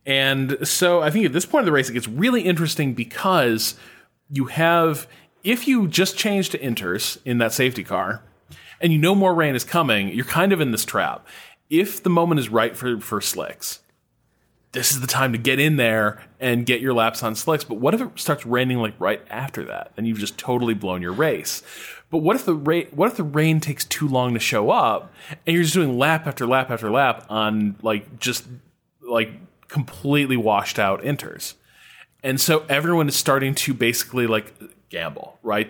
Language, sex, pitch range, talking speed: English, male, 115-155 Hz, 205 wpm